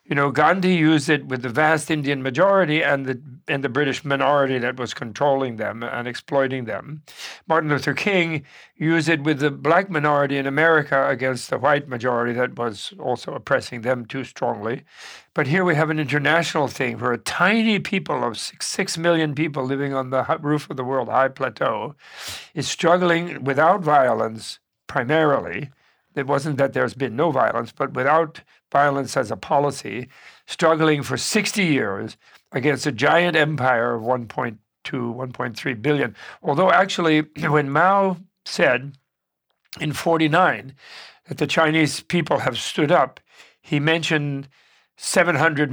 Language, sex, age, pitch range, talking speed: English, male, 60-79, 130-160 Hz, 155 wpm